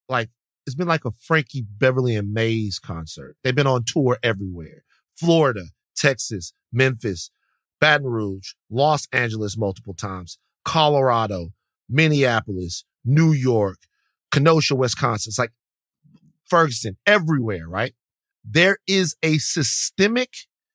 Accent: American